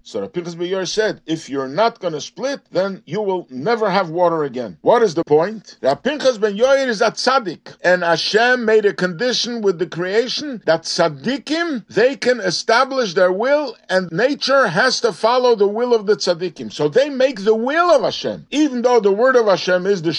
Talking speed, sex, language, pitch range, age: 195 wpm, male, English, 175-255 Hz, 50-69